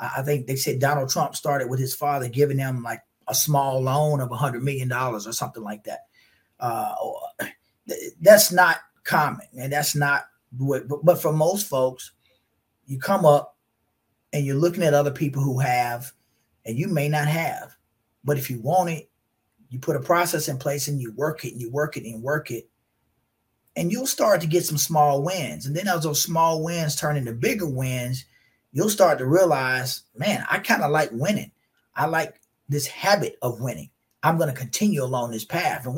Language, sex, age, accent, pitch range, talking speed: English, male, 30-49, American, 135-170 Hz, 195 wpm